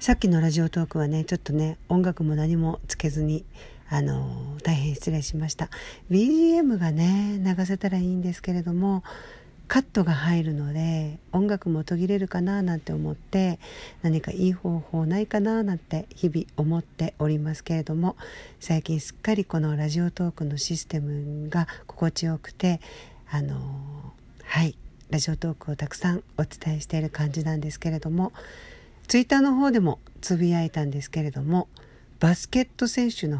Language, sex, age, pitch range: Japanese, female, 50-69, 155-190 Hz